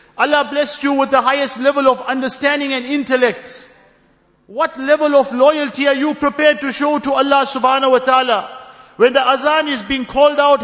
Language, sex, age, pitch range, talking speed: English, male, 50-69, 205-275 Hz, 180 wpm